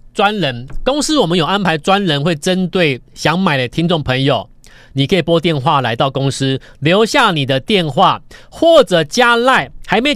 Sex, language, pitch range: male, Chinese, 130-210 Hz